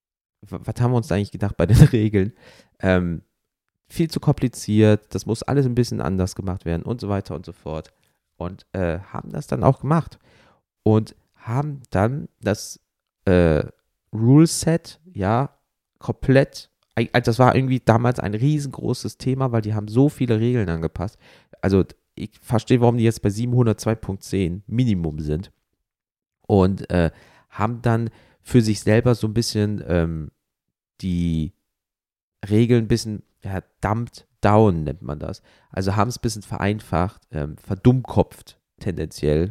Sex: male